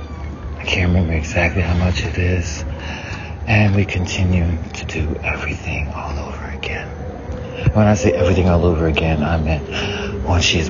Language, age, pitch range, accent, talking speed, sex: English, 60-79, 80-100 Hz, American, 170 wpm, male